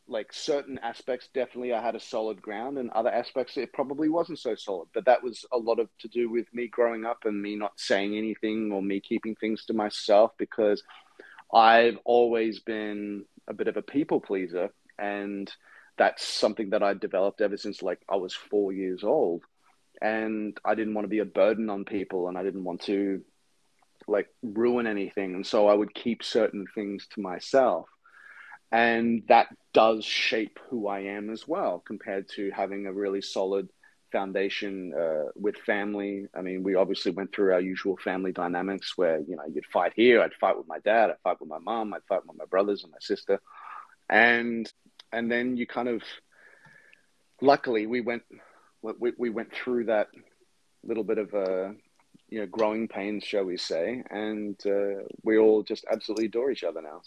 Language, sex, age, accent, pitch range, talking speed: English, male, 30-49, Australian, 100-115 Hz, 185 wpm